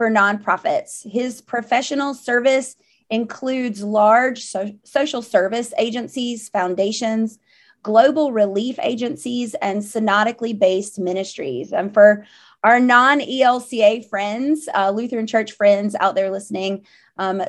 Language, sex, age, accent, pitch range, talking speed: English, female, 30-49, American, 200-245 Hz, 100 wpm